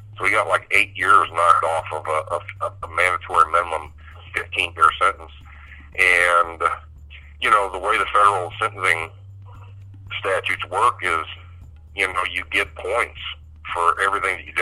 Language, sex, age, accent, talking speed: English, male, 50-69, American, 145 wpm